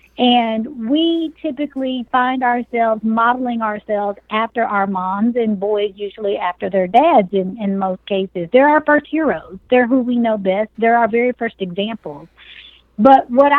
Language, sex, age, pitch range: English, female, 50-69, 210-255 Hz